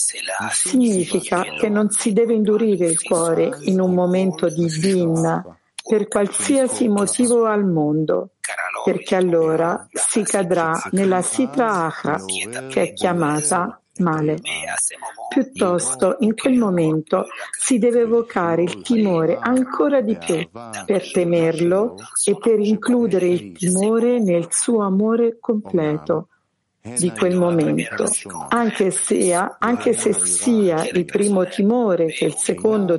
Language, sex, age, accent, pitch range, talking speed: Italian, female, 50-69, native, 170-225 Hz, 120 wpm